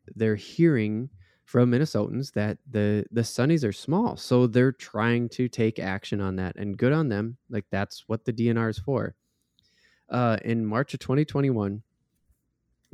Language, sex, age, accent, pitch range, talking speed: English, male, 20-39, American, 100-125 Hz, 160 wpm